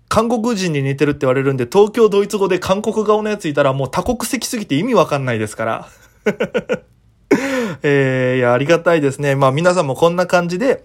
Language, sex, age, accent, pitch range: Japanese, male, 20-39, native, 130-205 Hz